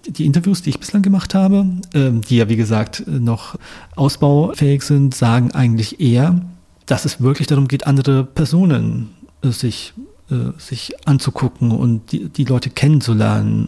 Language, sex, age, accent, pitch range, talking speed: German, male, 40-59, German, 115-145 Hz, 135 wpm